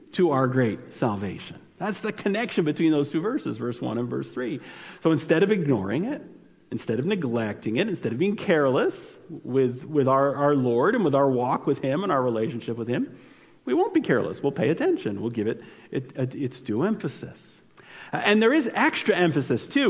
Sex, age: male, 50-69